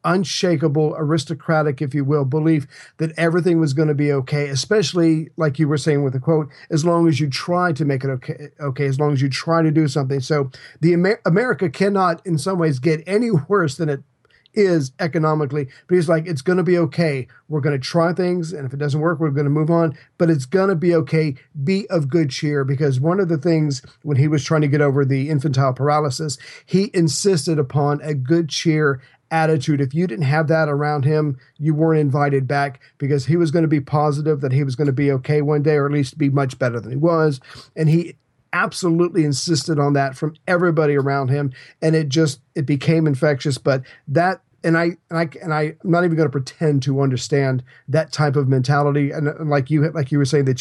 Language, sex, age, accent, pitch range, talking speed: English, male, 50-69, American, 140-165 Hz, 225 wpm